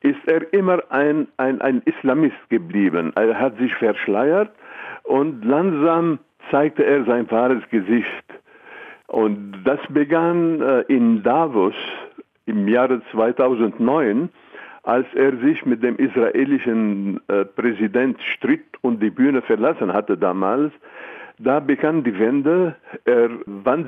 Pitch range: 110-165 Hz